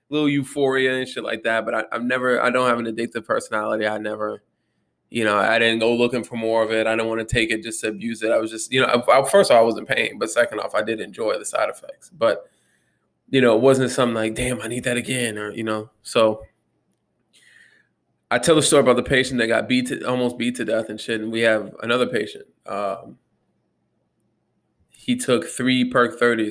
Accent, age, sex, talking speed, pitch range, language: American, 20-39, male, 230 wpm, 110-125 Hz, English